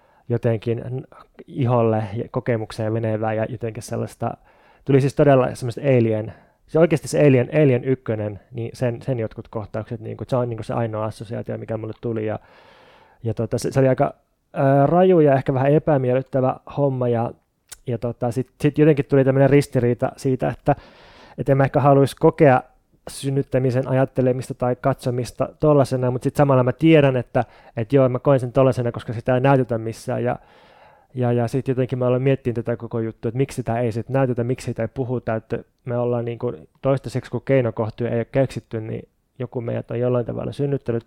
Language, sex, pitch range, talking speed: Finnish, male, 115-140 Hz, 185 wpm